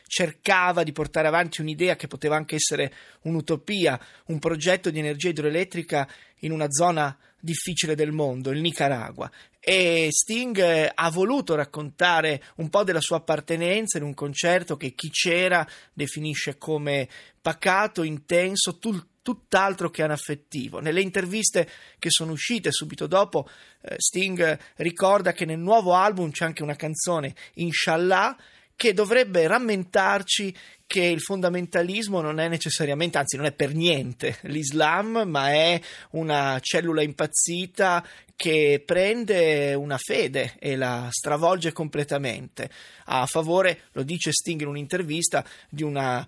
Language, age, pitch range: Italian, 20-39, 150-185 Hz